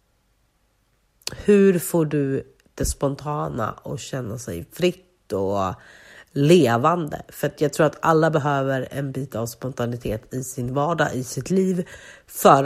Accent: native